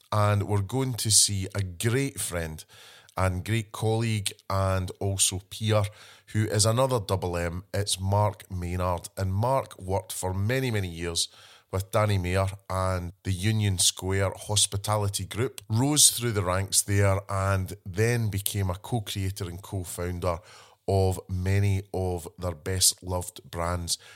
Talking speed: 140 wpm